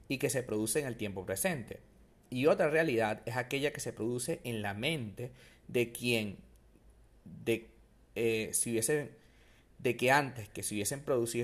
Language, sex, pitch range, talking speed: Spanish, male, 110-150 Hz, 170 wpm